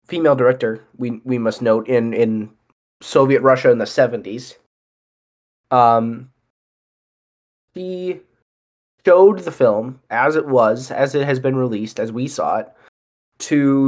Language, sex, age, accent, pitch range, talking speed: English, male, 20-39, American, 115-140 Hz, 135 wpm